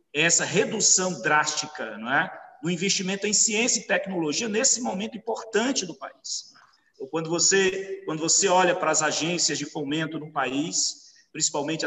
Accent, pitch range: Brazilian, 150-195 Hz